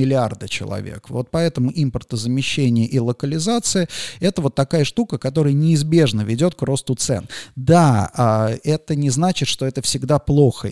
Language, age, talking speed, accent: Russian, 30-49, 140 wpm, native